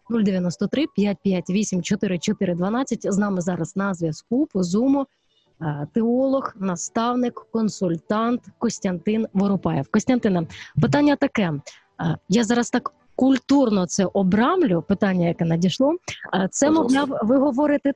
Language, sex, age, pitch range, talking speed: Ukrainian, female, 30-49, 190-250 Hz, 100 wpm